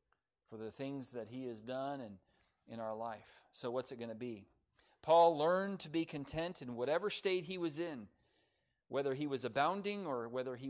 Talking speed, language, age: 190 wpm, English, 40-59